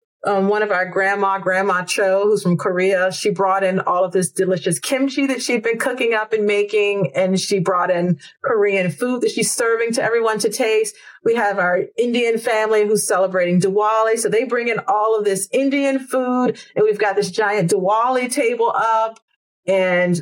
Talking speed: 190 wpm